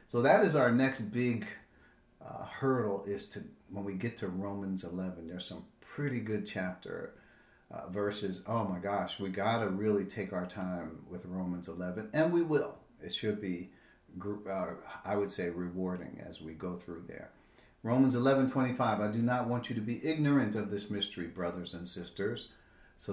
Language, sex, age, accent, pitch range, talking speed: English, male, 50-69, American, 95-125 Hz, 185 wpm